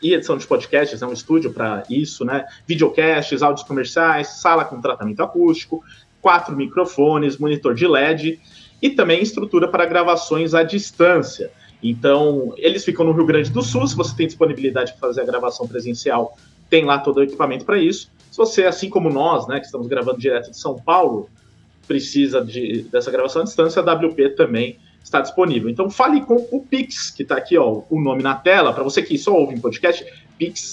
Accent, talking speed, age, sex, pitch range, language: Brazilian, 190 wpm, 20-39, male, 140-185 Hz, Portuguese